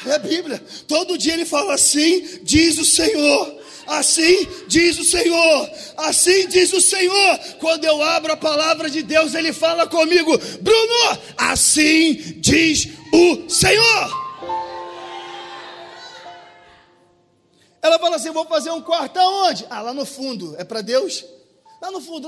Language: Portuguese